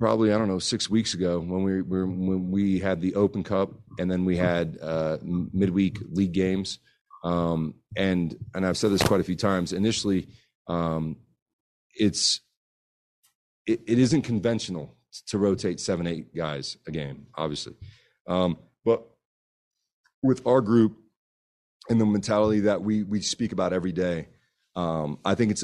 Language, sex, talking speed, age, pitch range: English, male, 160 wpm, 40-59, 85-105 Hz